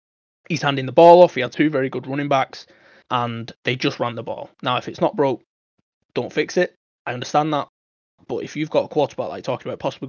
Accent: British